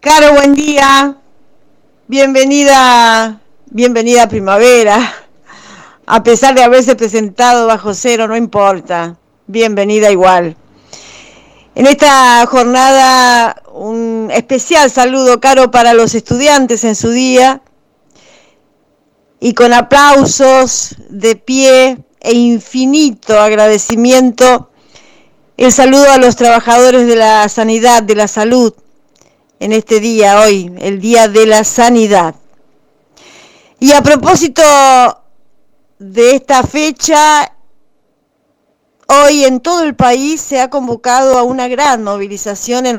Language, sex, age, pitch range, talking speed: Spanish, female, 40-59, 215-260 Hz, 110 wpm